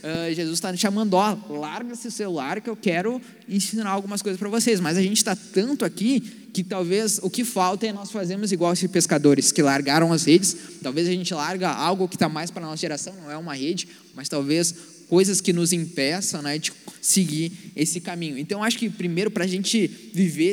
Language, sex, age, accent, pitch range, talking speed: Portuguese, male, 20-39, Brazilian, 160-195 Hz, 210 wpm